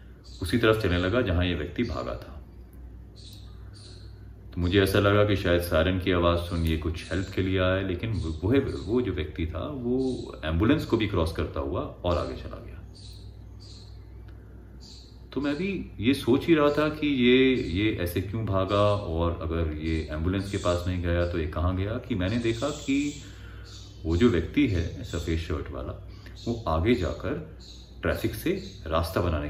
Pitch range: 85-105 Hz